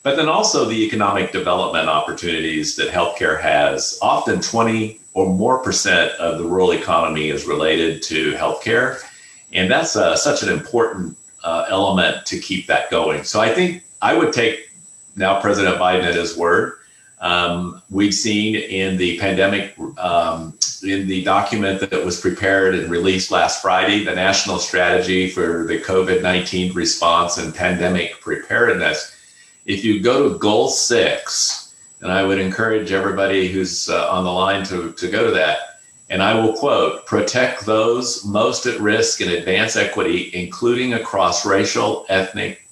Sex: male